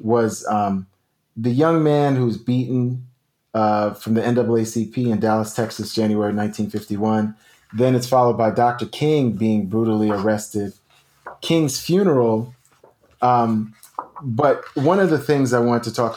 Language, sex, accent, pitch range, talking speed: English, male, American, 110-125 Hz, 140 wpm